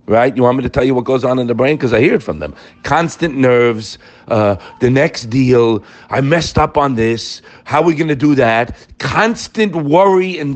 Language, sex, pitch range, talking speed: English, male, 130-180 Hz, 225 wpm